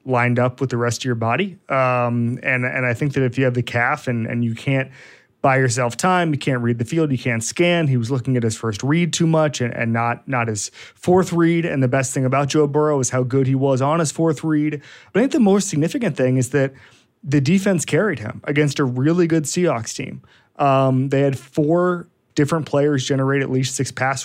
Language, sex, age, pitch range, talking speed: English, male, 30-49, 125-150 Hz, 240 wpm